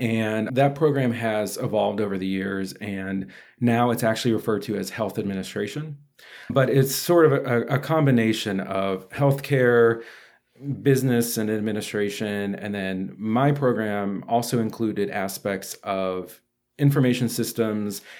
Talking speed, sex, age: 130 wpm, male, 40-59